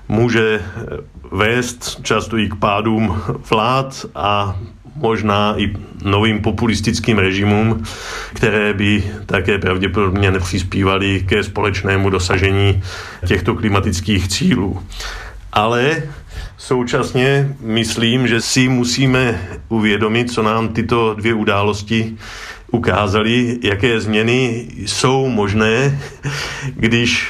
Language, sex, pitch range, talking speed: Czech, male, 100-115 Hz, 90 wpm